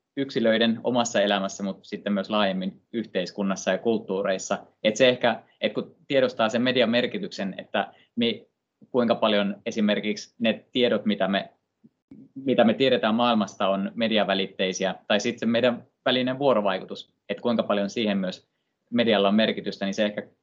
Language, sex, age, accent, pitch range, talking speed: Finnish, male, 20-39, native, 100-120 Hz, 150 wpm